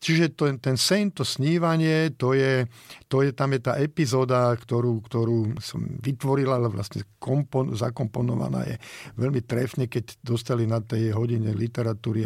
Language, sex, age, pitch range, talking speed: Slovak, male, 50-69, 120-155 Hz, 150 wpm